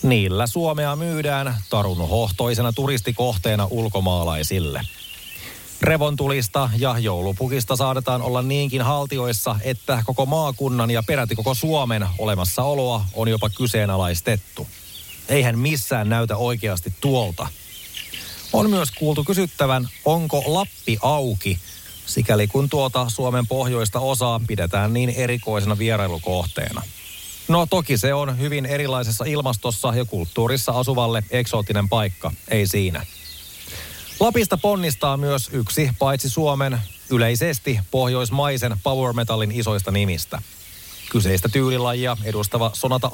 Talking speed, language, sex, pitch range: 105 wpm, Finnish, male, 100-135 Hz